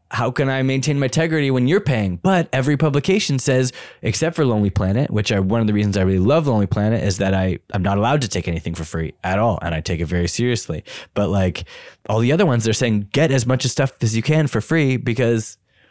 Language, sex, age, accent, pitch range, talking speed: English, male, 20-39, American, 95-130 Hz, 250 wpm